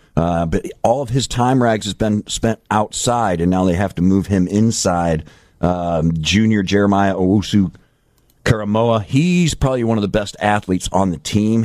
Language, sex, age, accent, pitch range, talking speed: English, male, 50-69, American, 85-105 Hz, 170 wpm